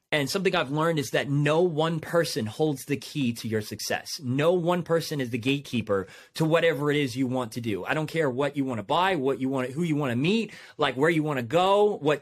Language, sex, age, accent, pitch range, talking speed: English, male, 30-49, American, 135-185 Hz, 255 wpm